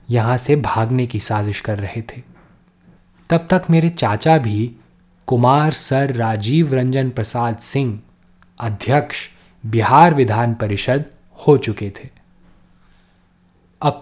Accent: native